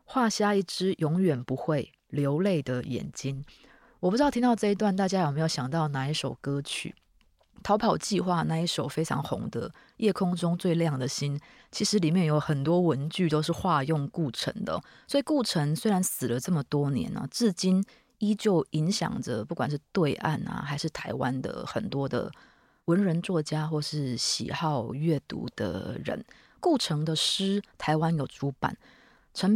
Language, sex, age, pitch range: Chinese, female, 20-39, 145-195 Hz